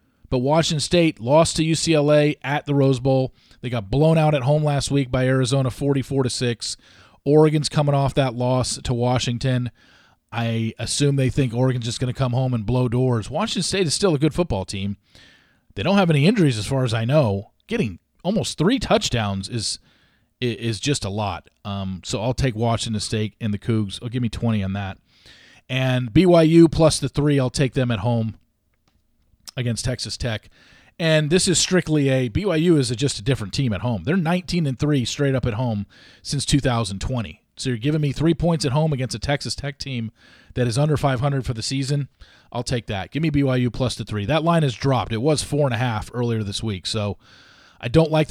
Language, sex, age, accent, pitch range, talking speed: English, male, 40-59, American, 115-145 Hz, 210 wpm